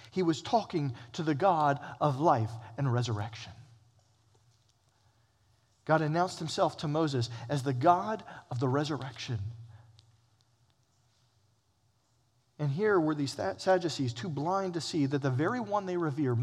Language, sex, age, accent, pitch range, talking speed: English, male, 40-59, American, 110-145 Hz, 130 wpm